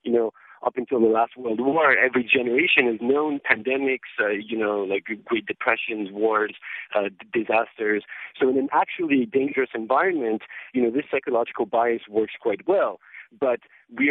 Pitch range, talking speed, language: 115-150 Hz, 160 wpm, English